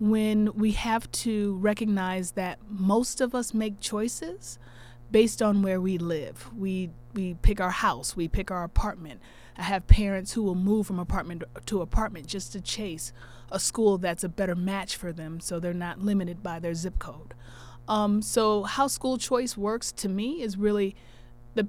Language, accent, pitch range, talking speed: English, American, 170-215 Hz, 180 wpm